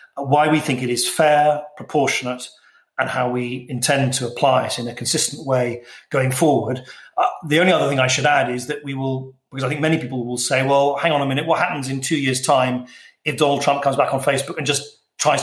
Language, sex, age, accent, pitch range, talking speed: English, male, 40-59, British, 125-150 Hz, 235 wpm